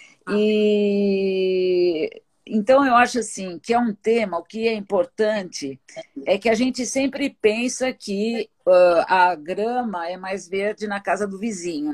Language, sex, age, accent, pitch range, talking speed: Portuguese, female, 50-69, Brazilian, 185-225 Hz, 150 wpm